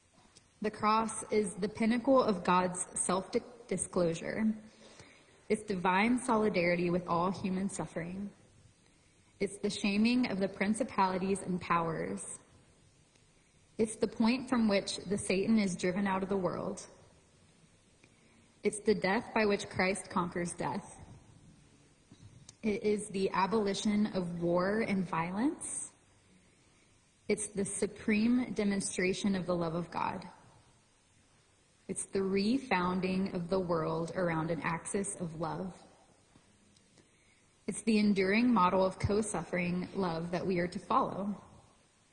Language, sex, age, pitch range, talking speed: English, female, 20-39, 180-215 Hz, 120 wpm